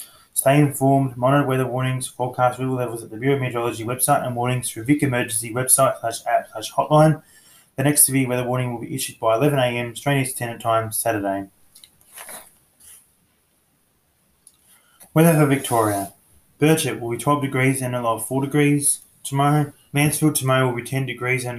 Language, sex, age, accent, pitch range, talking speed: English, male, 20-39, Australian, 115-135 Hz, 170 wpm